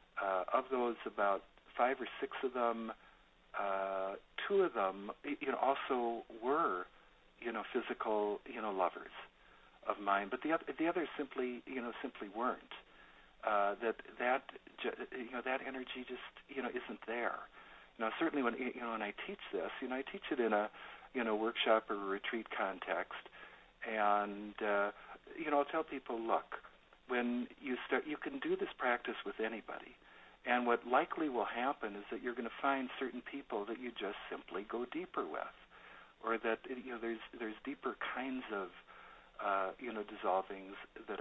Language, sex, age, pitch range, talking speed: English, male, 60-79, 105-135 Hz, 165 wpm